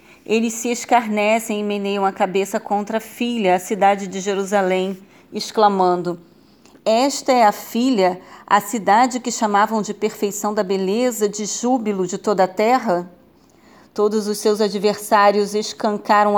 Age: 40-59